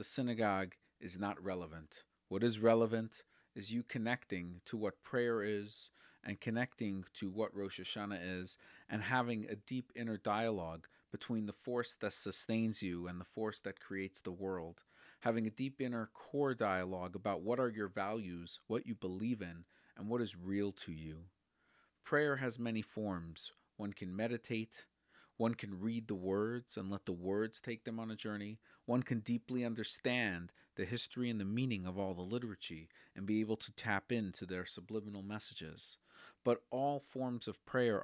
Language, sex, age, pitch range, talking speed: English, male, 40-59, 95-120 Hz, 170 wpm